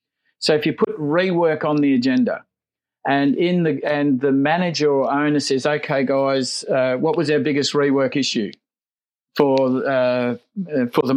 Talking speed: 165 wpm